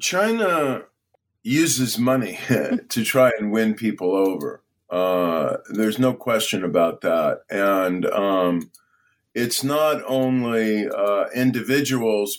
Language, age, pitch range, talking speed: English, 40-59, 105-125 Hz, 105 wpm